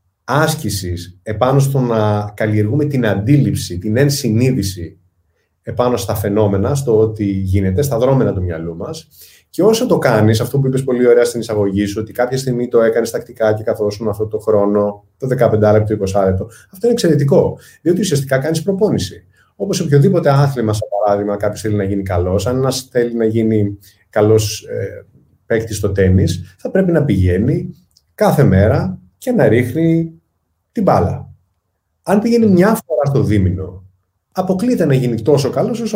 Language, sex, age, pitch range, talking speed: Greek, male, 30-49, 100-140 Hz, 165 wpm